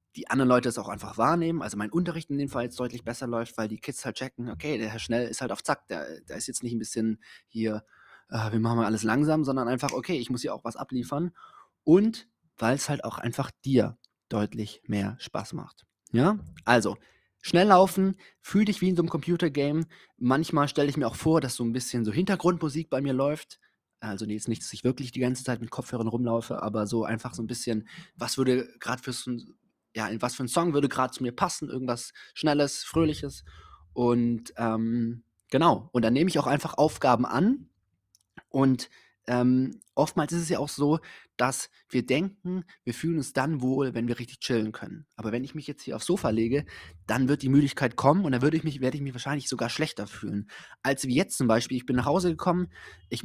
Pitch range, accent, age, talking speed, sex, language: 115-150 Hz, German, 20-39, 220 wpm, male, German